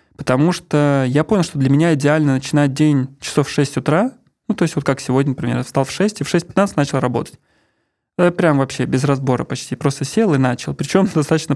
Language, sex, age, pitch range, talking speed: Russian, male, 20-39, 130-155 Hz, 210 wpm